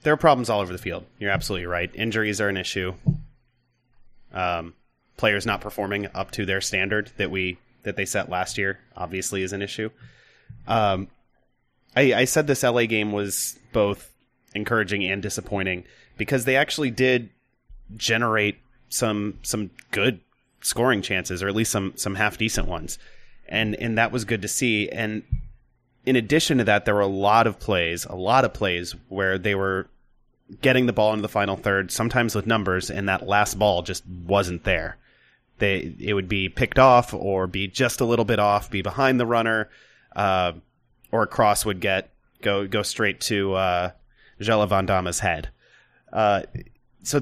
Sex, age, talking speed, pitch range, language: male, 30-49, 175 wpm, 95-125 Hz, English